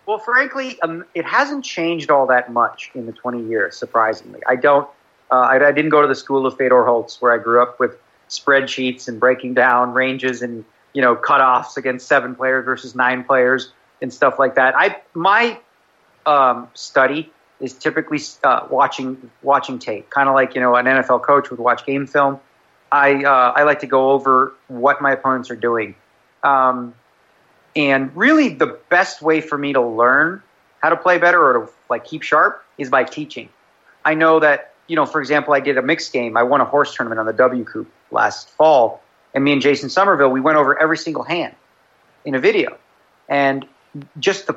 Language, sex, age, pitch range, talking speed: English, male, 30-49, 125-150 Hz, 200 wpm